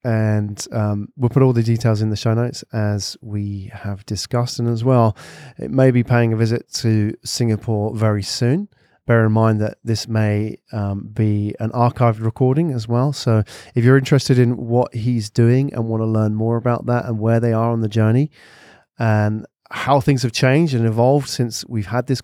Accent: British